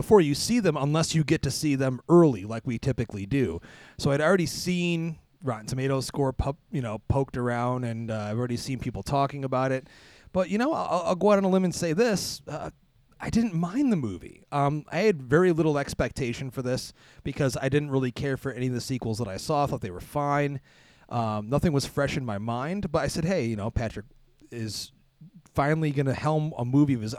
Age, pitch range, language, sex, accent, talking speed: 30-49, 125-165 Hz, English, male, American, 225 wpm